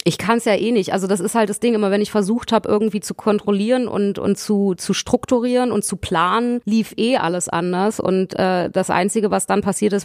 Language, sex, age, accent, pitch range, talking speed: German, female, 30-49, German, 180-210 Hz, 240 wpm